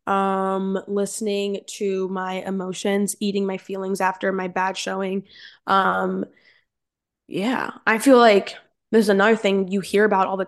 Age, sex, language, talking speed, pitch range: 10-29, female, English, 145 wpm, 195-220 Hz